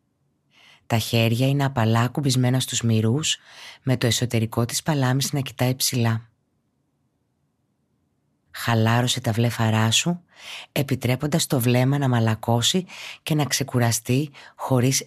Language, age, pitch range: Greek, 20-39, 115-145 Hz